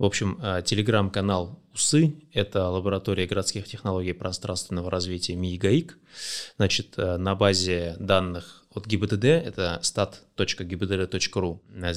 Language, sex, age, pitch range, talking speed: Russian, male, 20-39, 90-115 Hz, 110 wpm